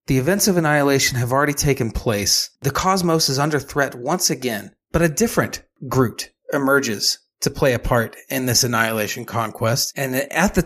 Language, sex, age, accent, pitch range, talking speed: English, male, 30-49, American, 125-160 Hz, 175 wpm